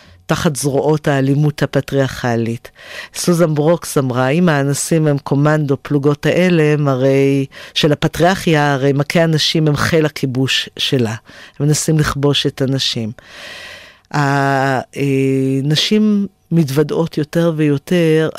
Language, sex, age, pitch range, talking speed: Hebrew, female, 50-69, 140-160 Hz, 100 wpm